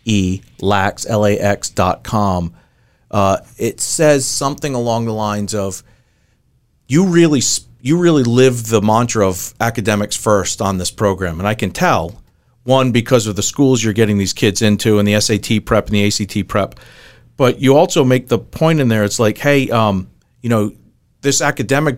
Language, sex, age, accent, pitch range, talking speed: English, male, 40-59, American, 105-135 Hz, 165 wpm